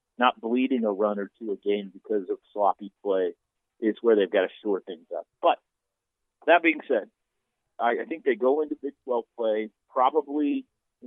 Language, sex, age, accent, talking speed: English, male, 50-69, American, 190 wpm